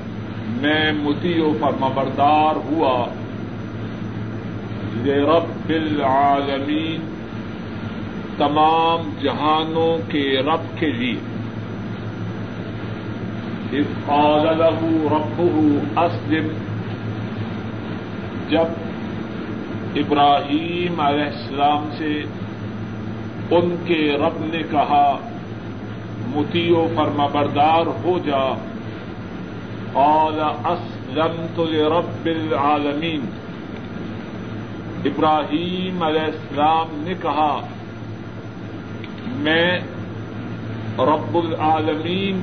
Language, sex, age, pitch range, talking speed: Urdu, male, 50-69, 110-155 Hz, 60 wpm